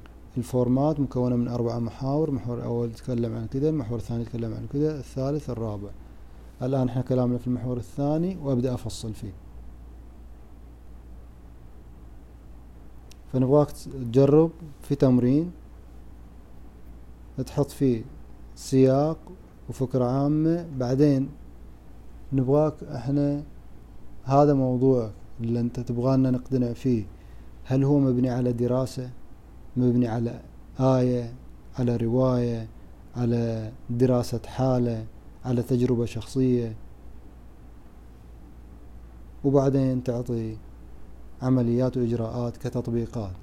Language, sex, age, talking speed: Arabic, male, 30-49, 90 wpm